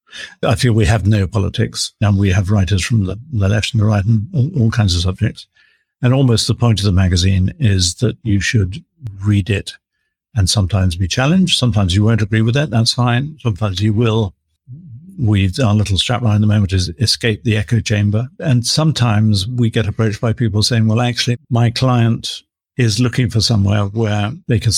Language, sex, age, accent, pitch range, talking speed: English, male, 60-79, British, 100-120 Hz, 200 wpm